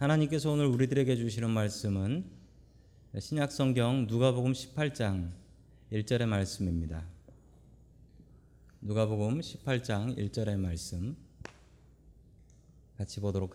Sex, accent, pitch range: male, native, 105-130 Hz